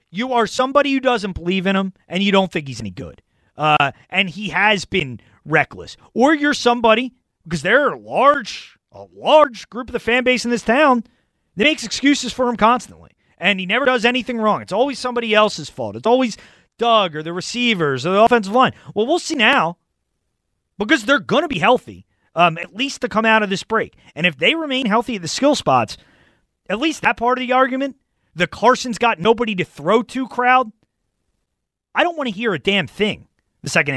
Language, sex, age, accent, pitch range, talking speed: English, male, 30-49, American, 185-250 Hz, 210 wpm